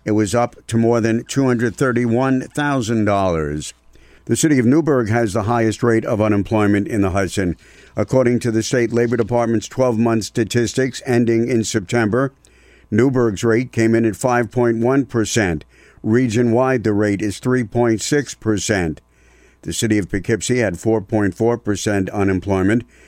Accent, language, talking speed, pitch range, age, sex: American, English, 135 wpm, 105-120 Hz, 60-79, male